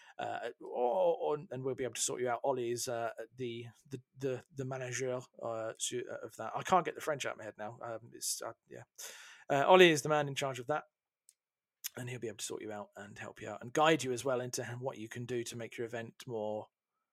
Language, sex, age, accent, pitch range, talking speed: English, male, 40-59, British, 120-155 Hz, 250 wpm